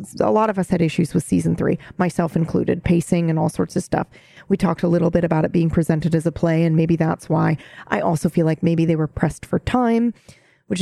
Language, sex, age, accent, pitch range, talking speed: English, female, 30-49, American, 165-200 Hz, 245 wpm